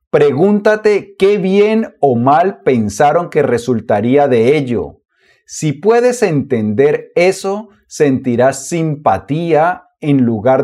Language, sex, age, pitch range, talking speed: Spanish, male, 40-59, 135-195 Hz, 100 wpm